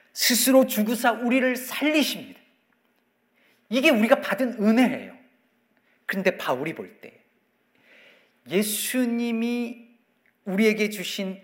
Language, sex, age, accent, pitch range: Korean, male, 40-59, native, 195-245 Hz